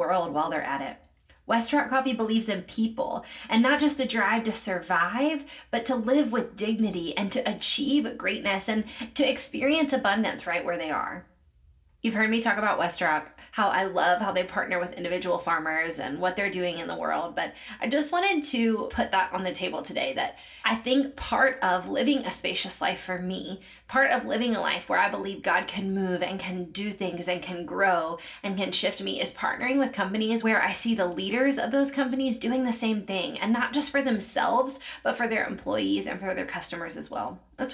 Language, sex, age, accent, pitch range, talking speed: English, female, 20-39, American, 185-250 Hz, 210 wpm